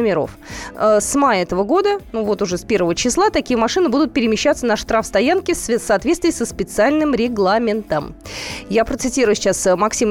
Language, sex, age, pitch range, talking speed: Russian, female, 20-39, 200-270 Hz, 160 wpm